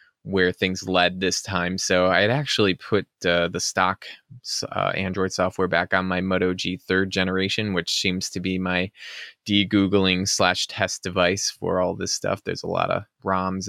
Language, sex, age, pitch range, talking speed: English, male, 20-39, 90-95 Hz, 175 wpm